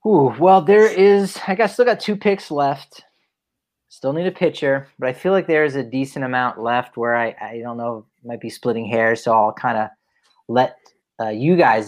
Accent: American